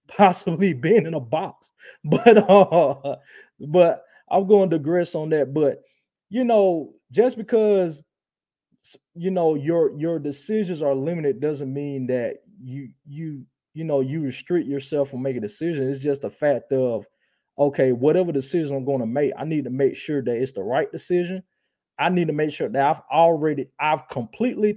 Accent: American